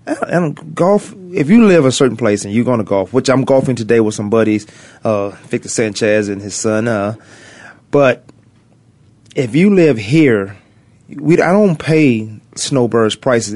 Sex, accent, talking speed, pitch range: male, American, 170 wpm, 110-145 Hz